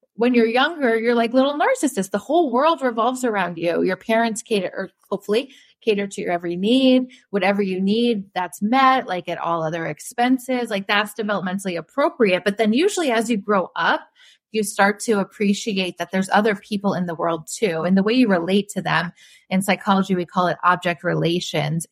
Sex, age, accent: female, 30-49, American